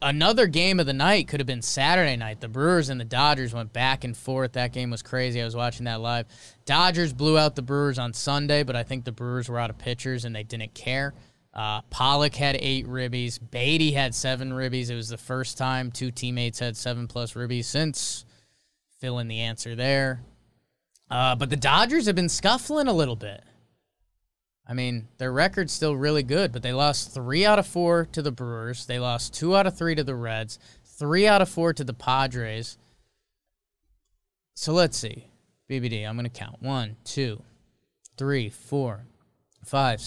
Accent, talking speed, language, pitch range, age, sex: American, 195 wpm, English, 120-150 Hz, 20-39, male